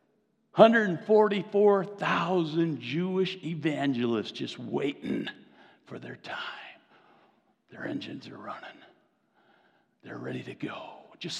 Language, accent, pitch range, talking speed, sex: English, American, 130-190 Hz, 90 wpm, male